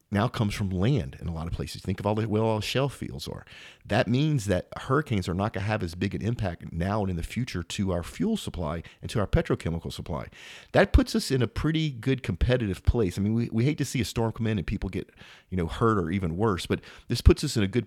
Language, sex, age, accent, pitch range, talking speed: English, male, 40-59, American, 90-115 Hz, 270 wpm